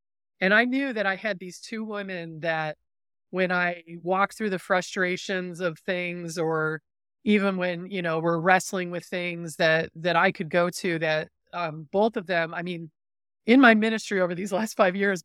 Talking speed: 190 wpm